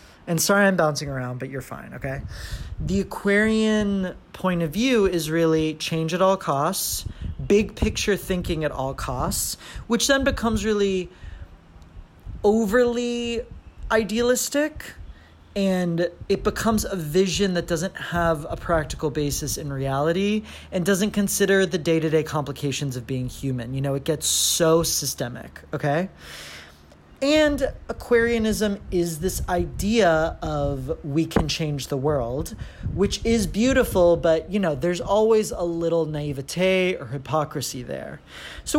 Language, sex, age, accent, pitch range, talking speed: English, male, 30-49, American, 140-205 Hz, 135 wpm